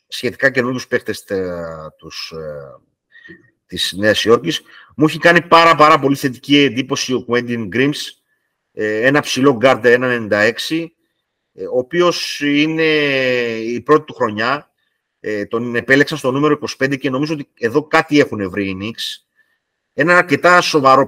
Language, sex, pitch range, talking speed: Greek, male, 115-165 Hz, 140 wpm